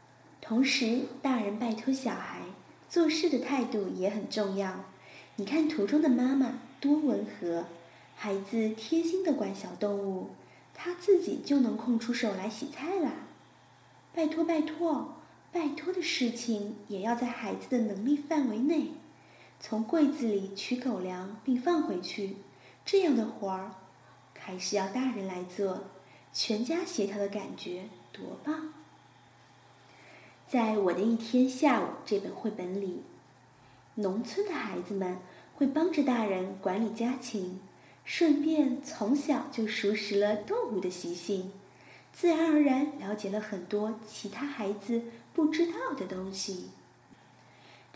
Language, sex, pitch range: Chinese, female, 200-290 Hz